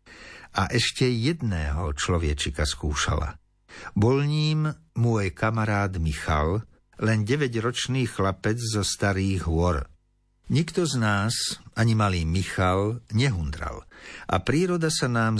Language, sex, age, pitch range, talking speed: Slovak, male, 60-79, 85-120 Hz, 105 wpm